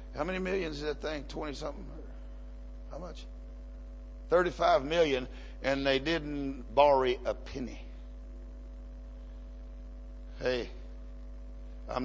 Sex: male